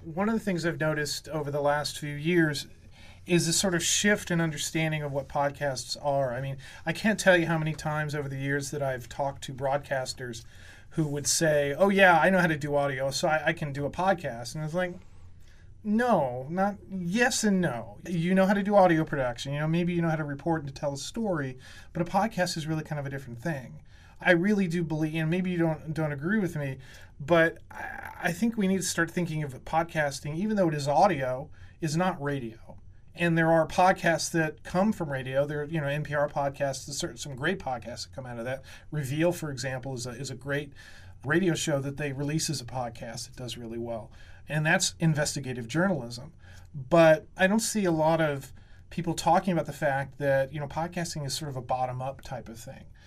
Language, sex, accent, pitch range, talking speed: English, male, American, 135-170 Hz, 220 wpm